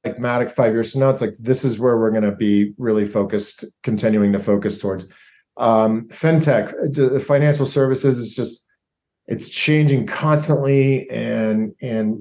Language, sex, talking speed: English, male, 155 wpm